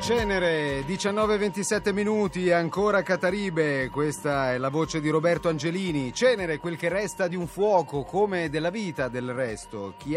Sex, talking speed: male, 160 wpm